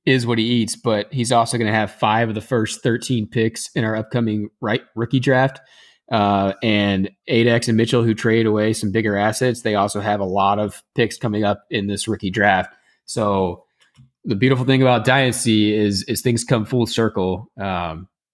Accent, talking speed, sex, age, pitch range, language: American, 195 wpm, male, 20-39, 100-125 Hz, English